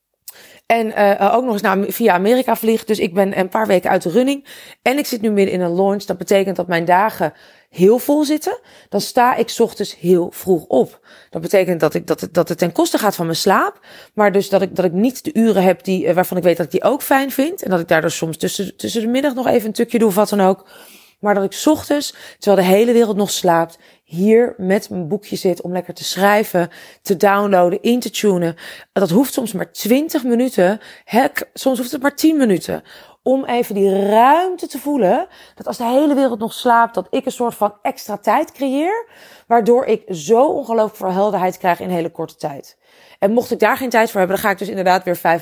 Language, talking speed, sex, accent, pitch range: Dutch, 235 wpm, female, Dutch, 185-250 Hz